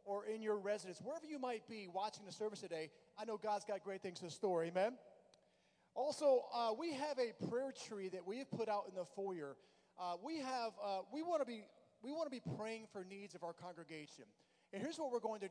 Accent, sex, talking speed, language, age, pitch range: American, male, 230 wpm, English, 30-49, 190-240 Hz